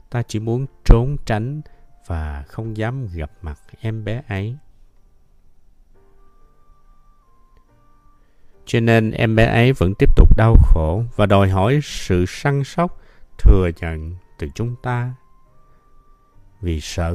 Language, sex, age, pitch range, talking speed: Vietnamese, male, 50-69, 85-120 Hz, 125 wpm